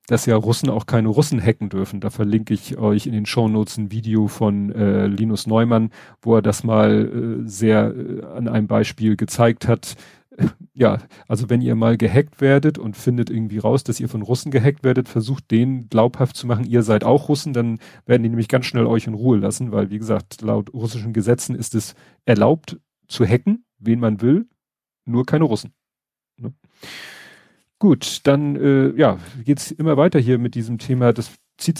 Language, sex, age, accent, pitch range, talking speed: German, male, 40-59, German, 110-135 Hz, 190 wpm